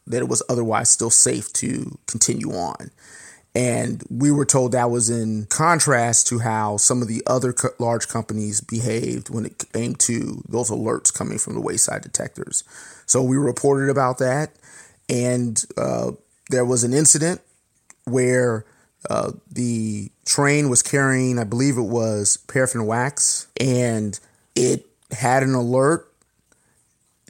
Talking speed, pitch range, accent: 150 wpm, 115-140 Hz, American